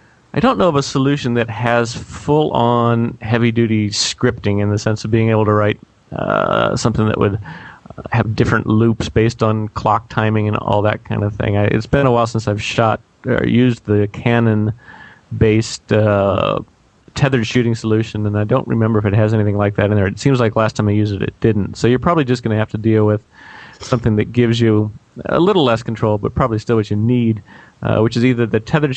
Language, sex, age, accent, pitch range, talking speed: English, male, 30-49, American, 105-120 Hz, 215 wpm